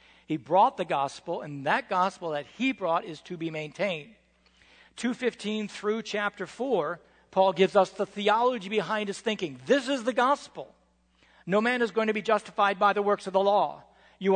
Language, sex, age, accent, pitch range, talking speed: English, male, 60-79, American, 180-215 Hz, 185 wpm